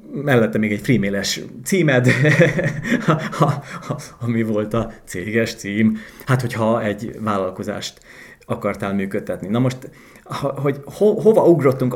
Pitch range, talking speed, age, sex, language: 110-145 Hz, 130 wpm, 30-49, male, Hungarian